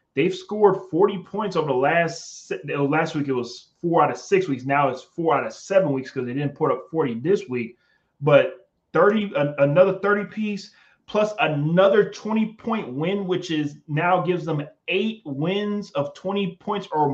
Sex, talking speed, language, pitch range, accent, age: male, 180 wpm, English, 145-195 Hz, American, 30-49